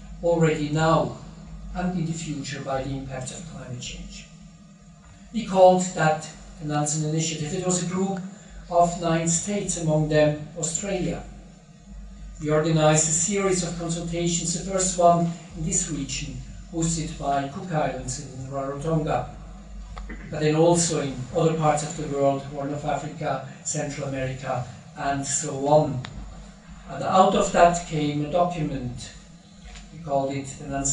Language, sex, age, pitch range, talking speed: English, male, 50-69, 155-180 Hz, 140 wpm